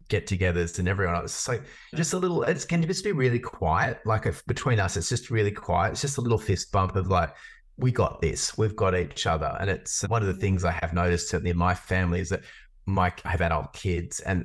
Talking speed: 240 wpm